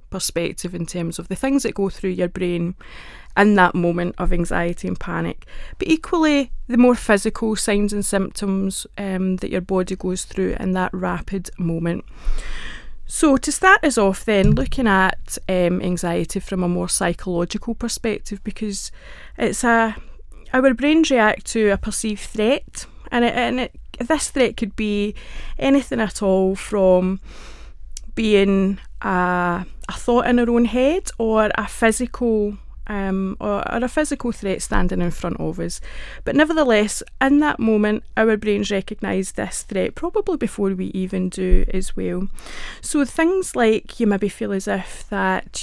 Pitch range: 185-230 Hz